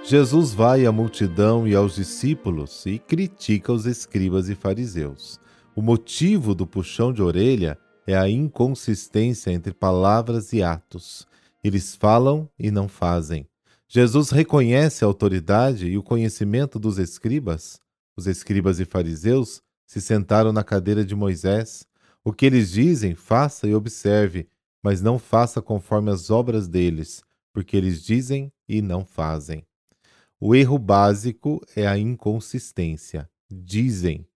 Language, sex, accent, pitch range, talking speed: Portuguese, male, Brazilian, 95-125 Hz, 135 wpm